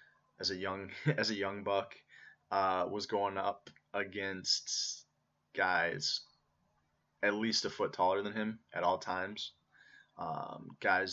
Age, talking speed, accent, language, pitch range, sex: 20-39, 135 wpm, American, English, 90-105 Hz, male